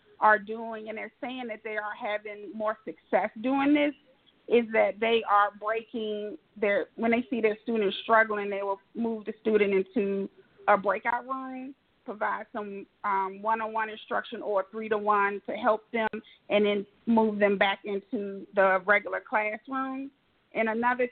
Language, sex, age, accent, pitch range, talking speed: English, female, 40-59, American, 205-240 Hz, 165 wpm